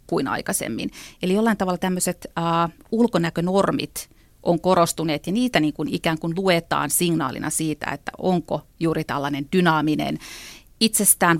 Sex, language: female, Finnish